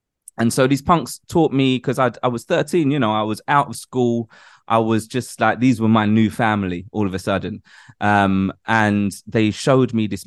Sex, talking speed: male, 210 wpm